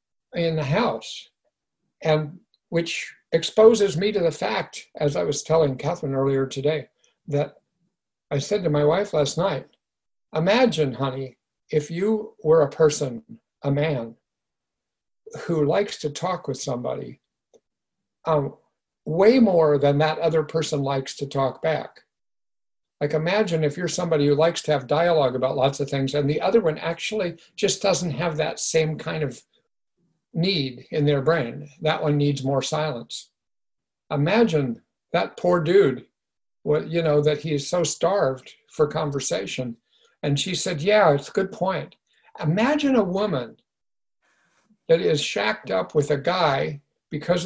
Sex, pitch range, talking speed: male, 145-190 Hz, 150 wpm